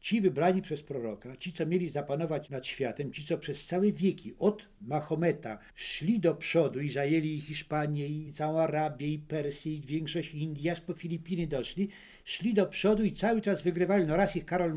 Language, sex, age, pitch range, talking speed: Polish, male, 60-79, 150-190 Hz, 185 wpm